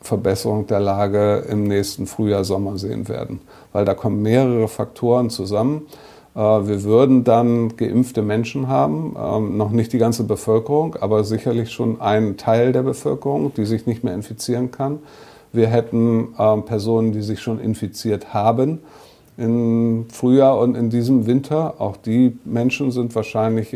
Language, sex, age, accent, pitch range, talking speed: German, male, 50-69, German, 110-125 Hz, 145 wpm